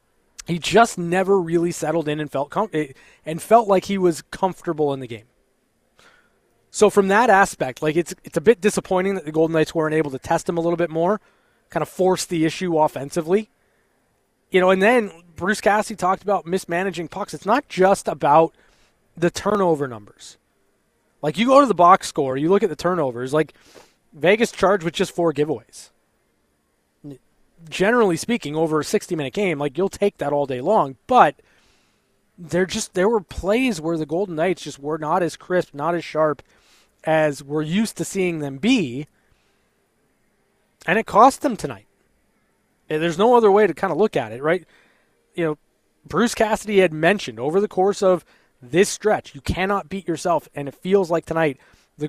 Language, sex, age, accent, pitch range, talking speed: English, male, 20-39, American, 155-200 Hz, 185 wpm